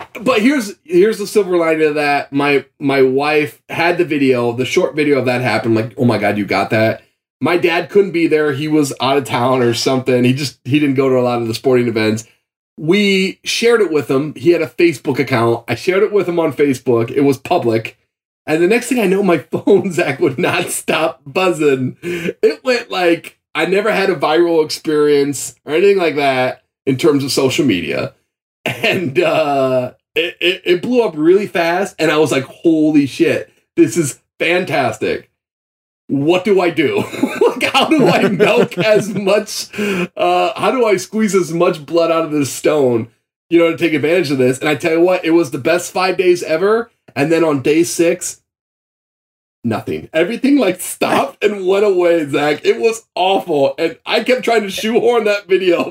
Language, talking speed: English, 200 wpm